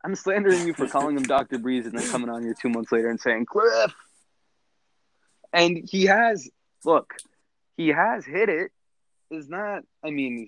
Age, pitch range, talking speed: 20-39, 115-165 Hz, 180 wpm